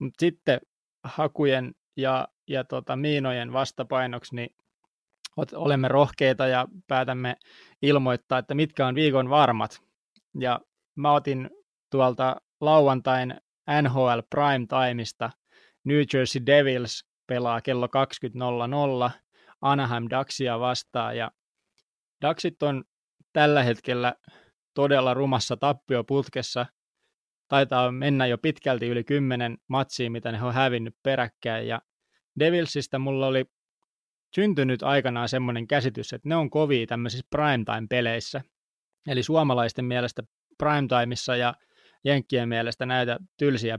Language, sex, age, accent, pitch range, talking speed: Finnish, male, 20-39, native, 120-140 Hz, 110 wpm